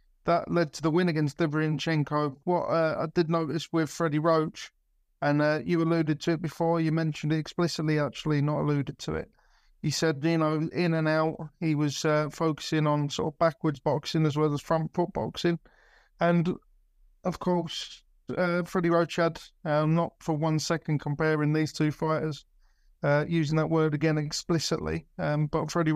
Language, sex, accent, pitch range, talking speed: English, male, British, 150-170 Hz, 185 wpm